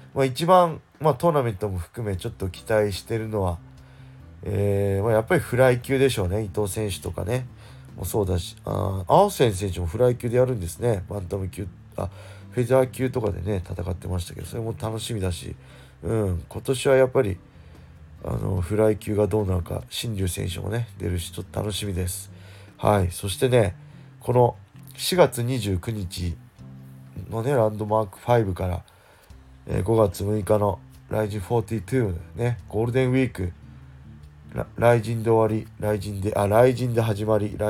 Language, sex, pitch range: Japanese, male, 95-120 Hz